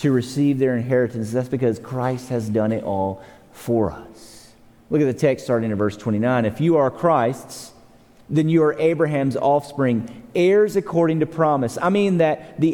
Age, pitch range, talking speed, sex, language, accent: 40-59, 115-170 Hz, 180 wpm, male, English, American